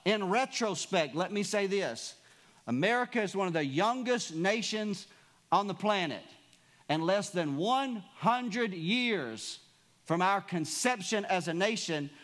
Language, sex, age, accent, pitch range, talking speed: English, male, 50-69, American, 155-215 Hz, 130 wpm